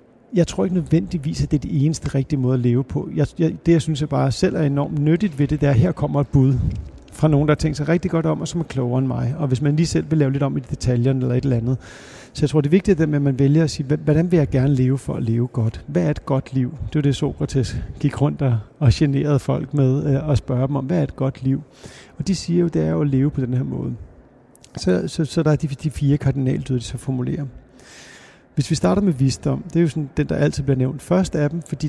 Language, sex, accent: Danish, male, native